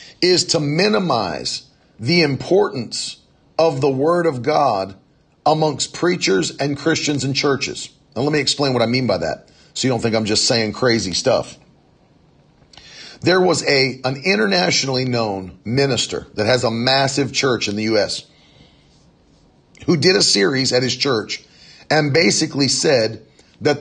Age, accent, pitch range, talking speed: 40-59, American, 125-160 Hz, 150 wpm